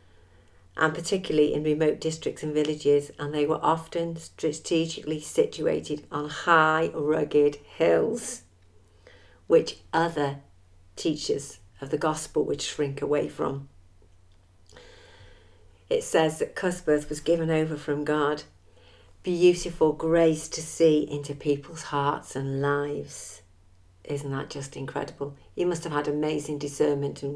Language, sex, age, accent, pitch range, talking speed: English, female, 50-69, British, 100-160 Hz, 125 wpm